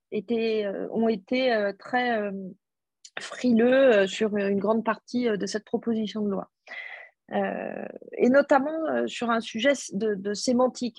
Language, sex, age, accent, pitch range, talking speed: French, female, 30-49, French, 205-240 Hz, 120 wpm